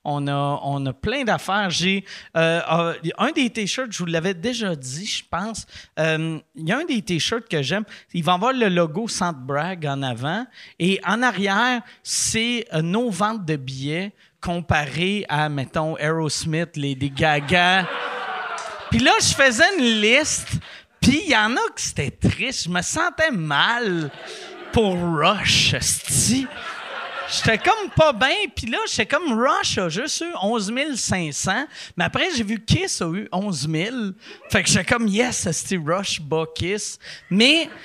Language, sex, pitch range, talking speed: French, male, 160-235 Hz, 165 wpm